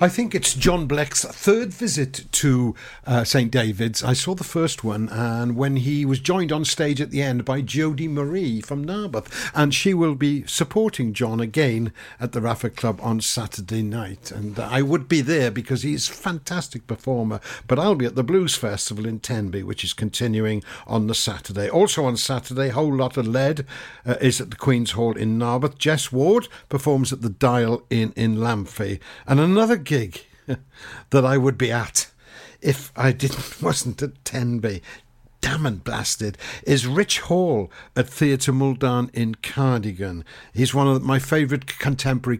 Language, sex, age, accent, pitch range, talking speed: English, male, 60-79, British, 115-145 Hz, 180 wpm